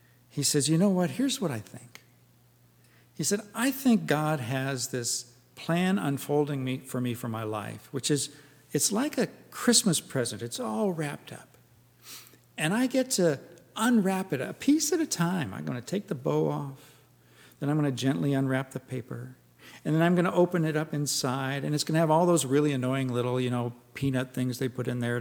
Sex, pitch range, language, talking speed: male, 130-185 Hz, English, 205 wpm